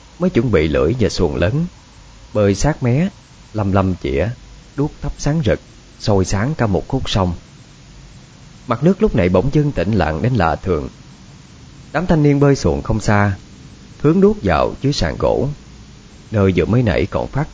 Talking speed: 180 wpm